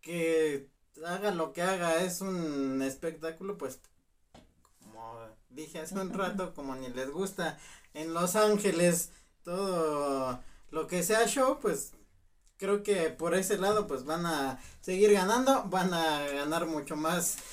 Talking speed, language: 145 wpm, Spanish